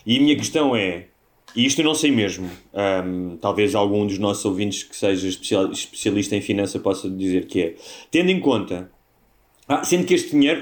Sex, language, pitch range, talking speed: male, Portuguese, 105-145 Hz, 190 wpm